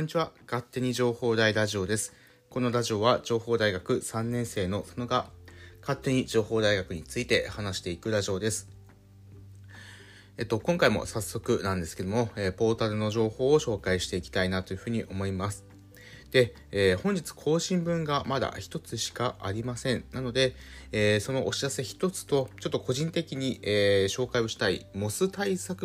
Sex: male